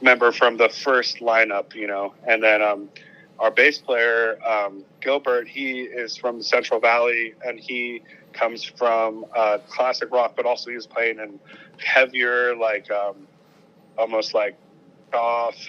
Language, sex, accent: English, male, American